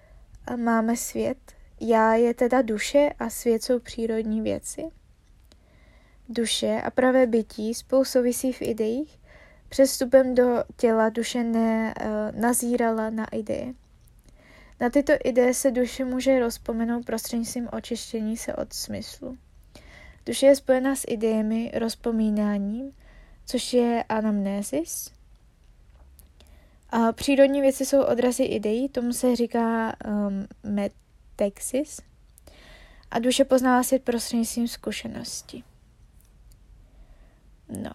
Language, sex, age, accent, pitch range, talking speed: Czech, female, 20-39, native, 225-260 Hz, 105 wpm